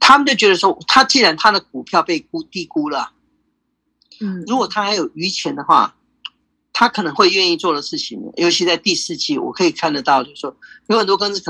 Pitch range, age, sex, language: 170-260 Hz, 40-59, male, Chinese